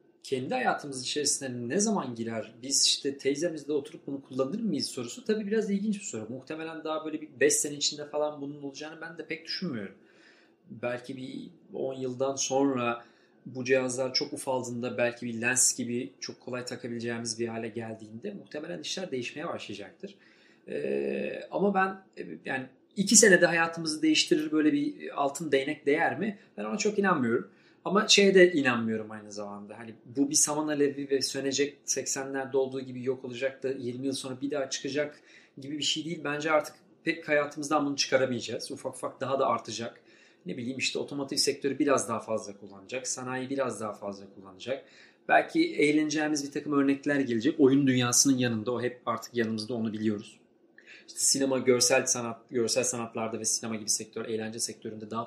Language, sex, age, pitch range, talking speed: Turkish, male, 40-59, 120-150 Hz, 170 wpm